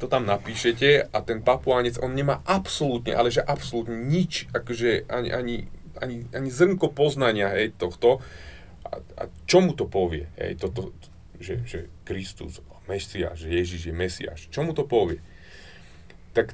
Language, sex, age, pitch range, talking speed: Slovak, male, 30-49, 95-140 Hz, 155 wpm